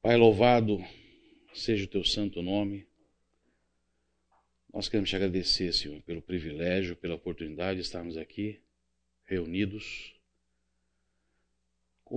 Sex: male